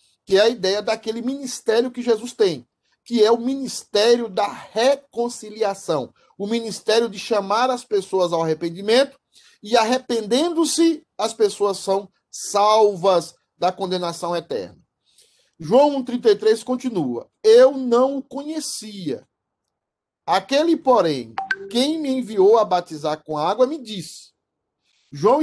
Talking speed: 120 wpm